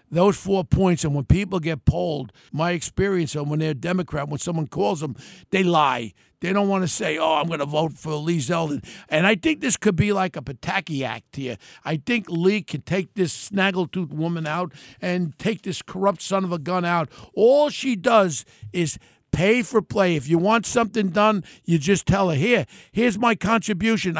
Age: 50-69